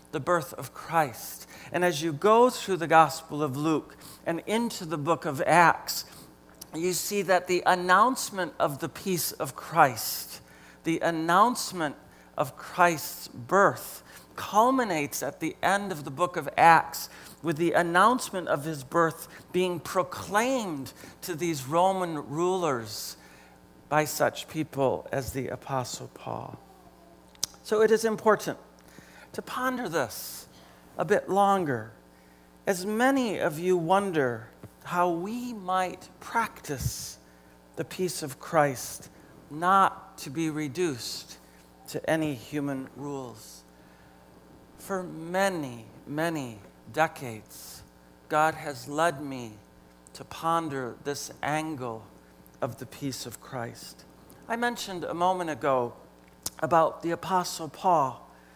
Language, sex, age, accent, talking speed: English, male, 50-69, American, 120 wpm